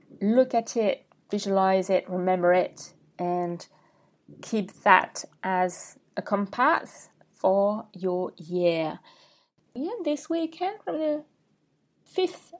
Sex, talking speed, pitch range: female, 105 wpm, 185-235 Hz